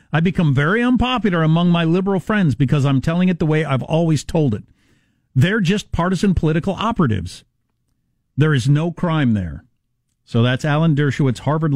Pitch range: 120-170 Hz